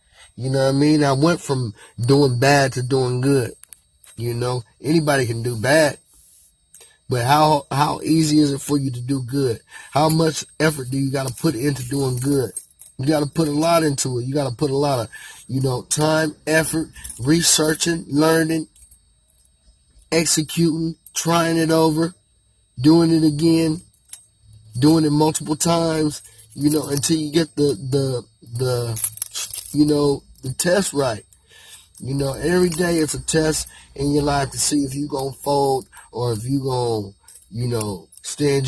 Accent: American